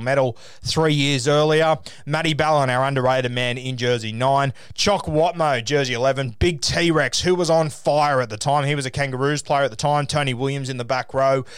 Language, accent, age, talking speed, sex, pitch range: English, Australian, 20-39, 200 wpm, male, 125-150 Hz